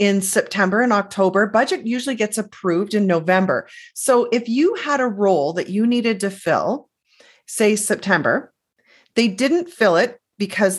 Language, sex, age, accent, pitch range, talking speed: English, female, 40-59, American, 185-245 Hz, 155 wpm